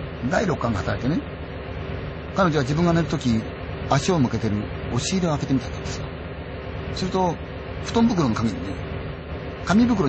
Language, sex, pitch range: Chinese, male, 115-160 Hz